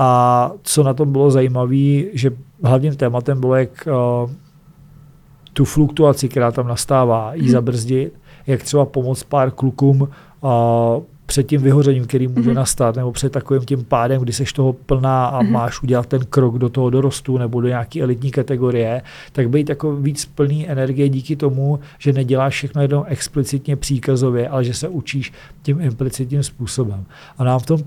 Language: Czech